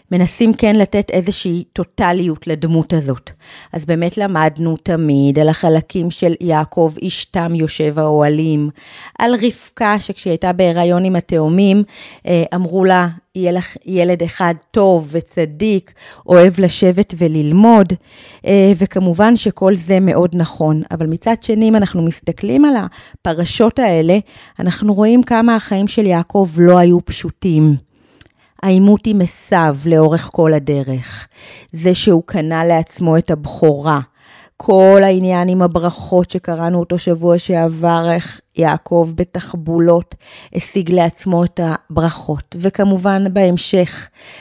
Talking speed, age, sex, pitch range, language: 115 wpm, 30-49, female, 165-195 Hz, Hebrew